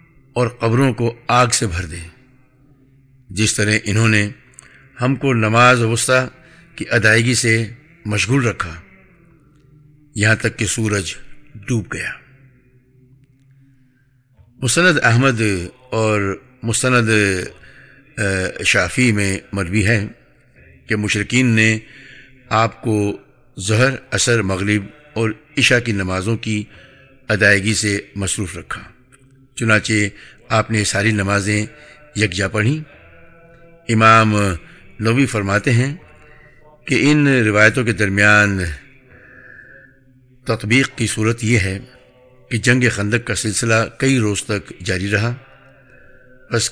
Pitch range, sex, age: 105-130 Hz, male, 60-79